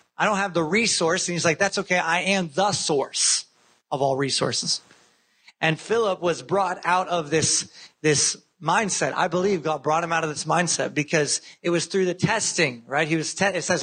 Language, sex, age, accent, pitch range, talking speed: English, male, 30-49, American, 160-205 Hz, 205 wpm